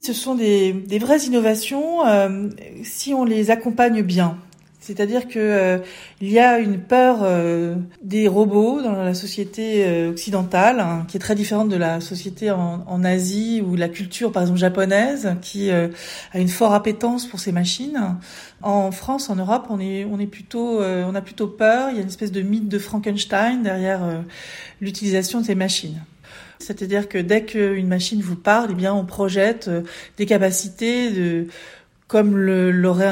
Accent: French